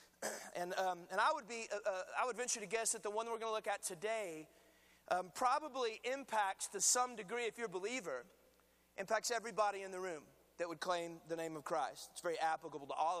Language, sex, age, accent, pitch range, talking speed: English, male, 30-49, American, 185-235 Hz, 225 wpm